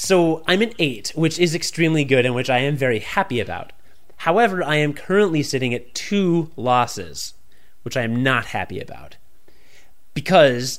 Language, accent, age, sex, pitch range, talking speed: English, American, 30-49, male, 115-160 Hz, 165 wpm